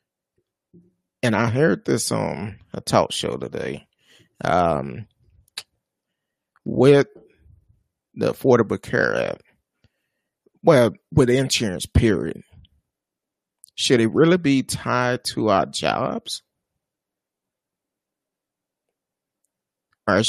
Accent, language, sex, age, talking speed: American, English, male, 30-49, 85 wpm